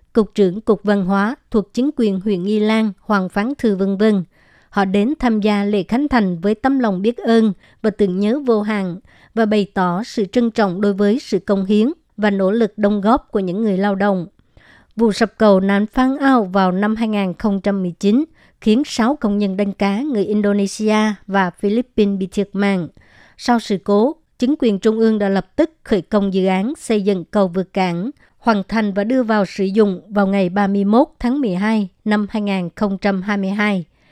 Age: 60-79